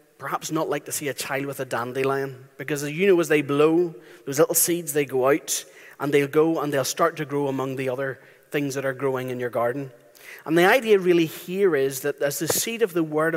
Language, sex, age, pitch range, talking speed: English, male, 30-49, 135-175 Hz, 245 wpm